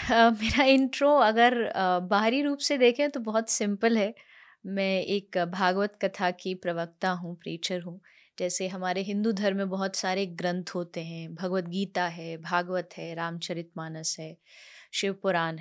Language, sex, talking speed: Punjabi, female, 160 wpm